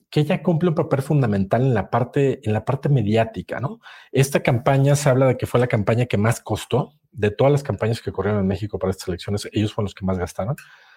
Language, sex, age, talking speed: Spanish, male, 40-59, 235 wpm